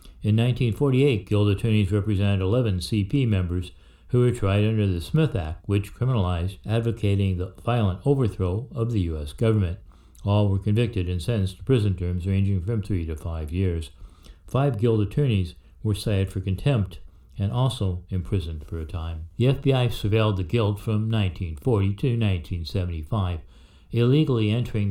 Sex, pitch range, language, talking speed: male, 90-115 Hz, English, 150 wpm